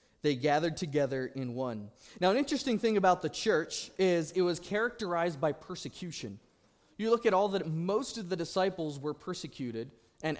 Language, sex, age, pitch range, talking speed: English, male, 20-39, 130-195 Hz, 175 wpm